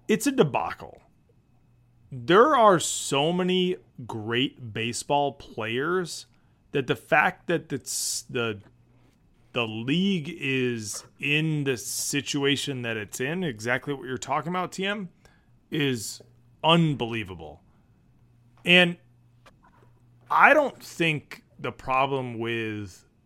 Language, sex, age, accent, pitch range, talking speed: English, male, 30-49, American, 120-160 Hz, 100 wpm